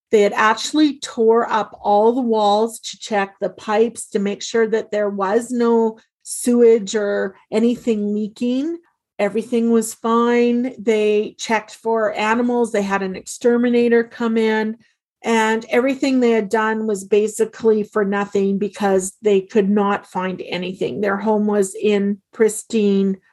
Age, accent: 40-59, American